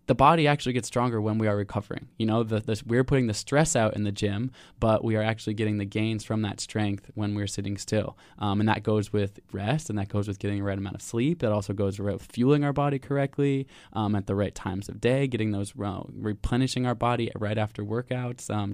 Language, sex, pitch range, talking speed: English, male, 105-120 Hz, 245 wpm